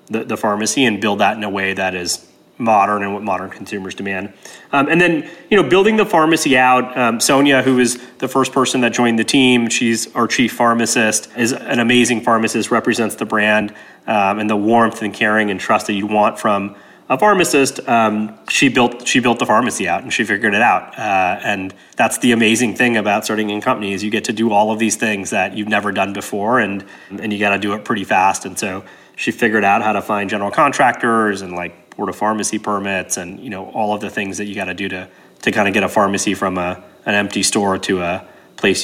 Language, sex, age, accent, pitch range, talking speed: English, male, 30-49, American, 100-125 Hz, 235 wpm